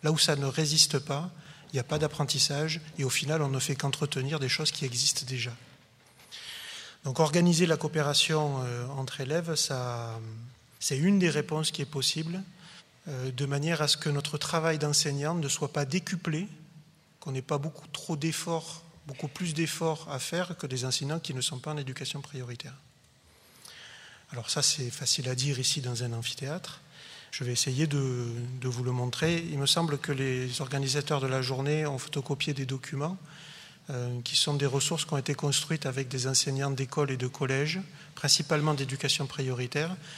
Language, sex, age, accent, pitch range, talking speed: French, male, 30-49, French, 130-155 Hz, 180 wpm